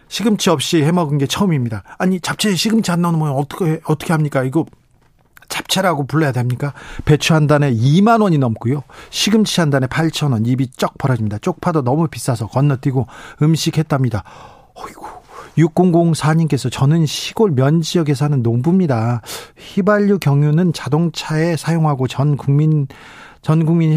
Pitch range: 130-170 Hz